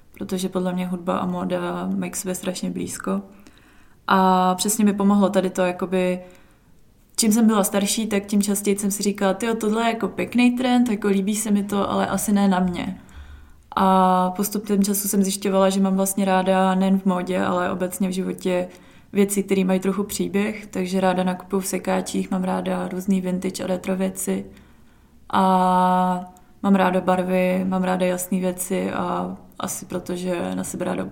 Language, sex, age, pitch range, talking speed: Czech, female, 20-39, 185-205 Hz, 175 wpm